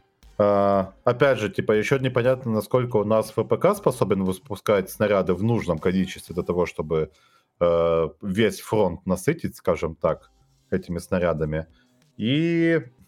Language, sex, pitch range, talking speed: Russian, male, 85-120 Hz, 130 wpm